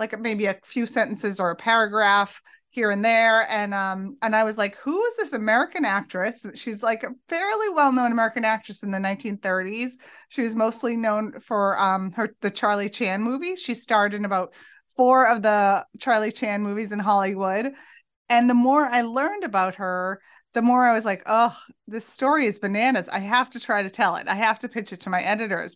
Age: 30-49